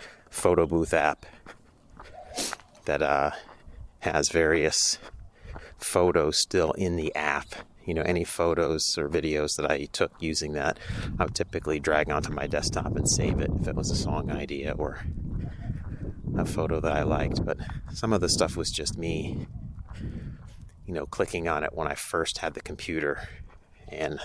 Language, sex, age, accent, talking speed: English, male, 30-49, American, 160 wpm